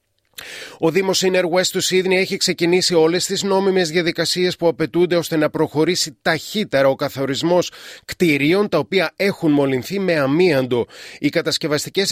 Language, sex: Greek, male